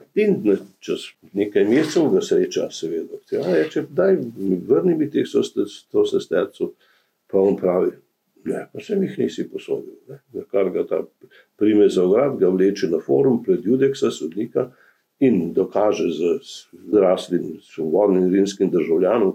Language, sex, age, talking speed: English, male, 50-69, 135 wpm